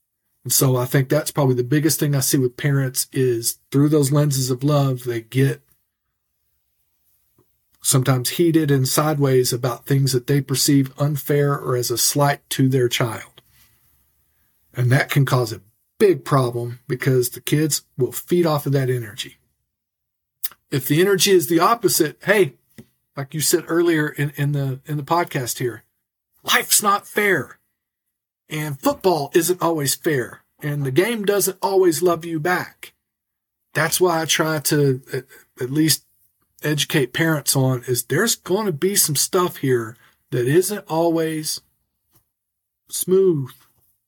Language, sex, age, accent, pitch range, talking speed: English, male, 50-69, American, 125-155 Hz, 150 wpm